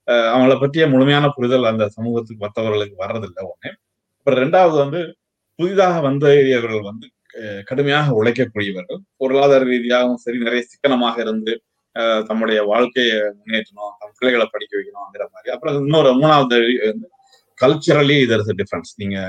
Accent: native